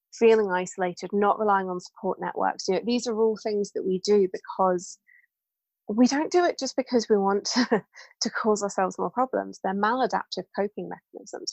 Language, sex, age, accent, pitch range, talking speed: English, female, 20-39, British, 185-220 Hz, 175 wpm